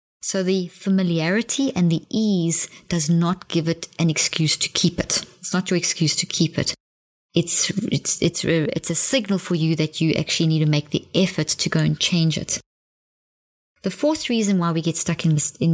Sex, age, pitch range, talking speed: female, 20-39, 160-195 Hz, 200 wpm